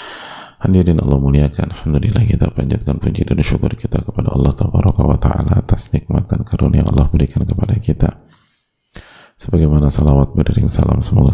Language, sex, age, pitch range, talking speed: Indonesian, male, 30-49, 70-100 Hz, 145 wpm